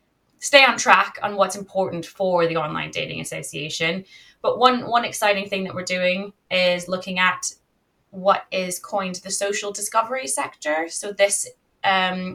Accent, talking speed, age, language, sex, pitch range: British, 155 wpm, 20-39, English, female, 170-205 Hz